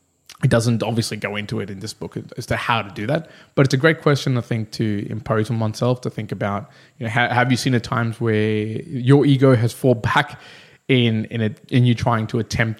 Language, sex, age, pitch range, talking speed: English, male, 20-39, 110-130 Hz, 235 wpm